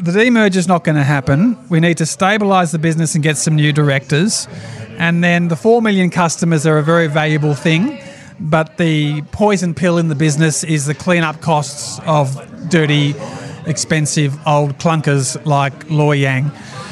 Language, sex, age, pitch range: English, male, 40-59, 150-180 Hz